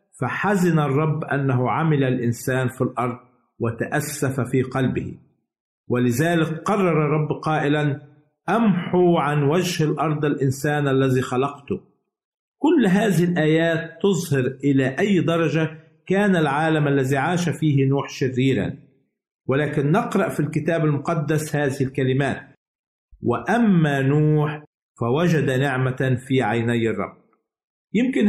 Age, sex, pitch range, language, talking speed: 50-69, male, 135-175 Hz, Arabic, 105 wpm